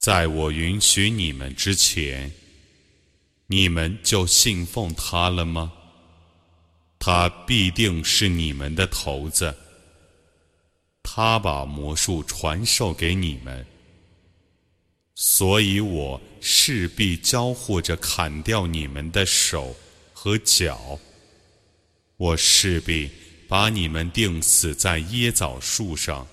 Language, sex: Arabic, male